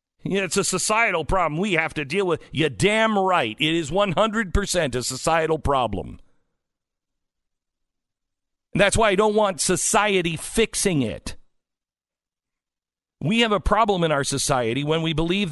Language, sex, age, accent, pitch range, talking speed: English, male, 50-69, American, 120-190 Hz, 145 wpm